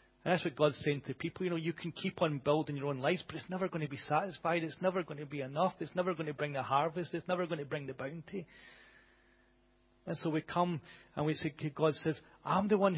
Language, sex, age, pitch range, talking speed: English, male, 40-59, 140-170 Hz, 260 wpm